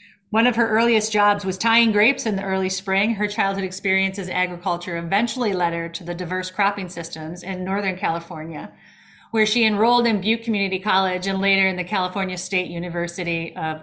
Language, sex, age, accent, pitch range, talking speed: English, female, 30-49, American, 180-220 Hz, 180 wpm